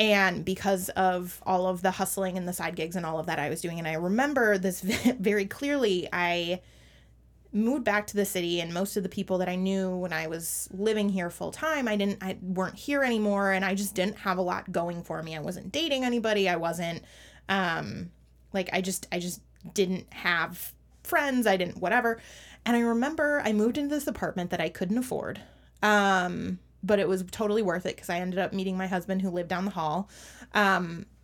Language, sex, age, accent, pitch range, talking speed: English, female, 20-39, American, 175-210 Hz, 215 wpm